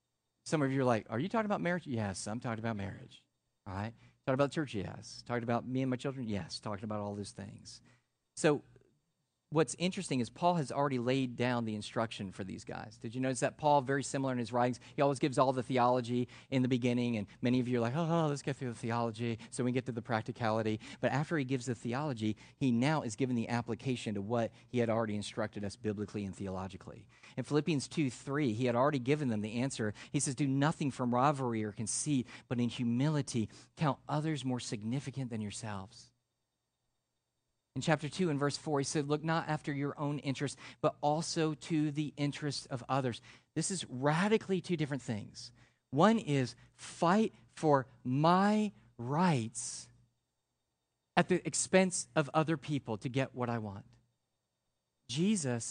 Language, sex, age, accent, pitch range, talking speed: English, male, 40-59, American, 120-145 Hz, 195 wpm